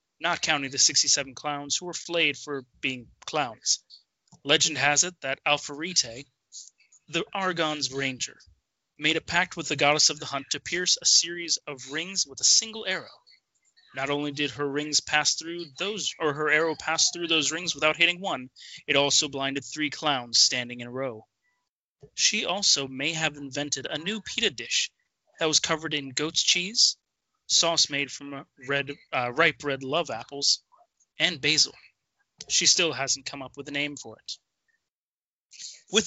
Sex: male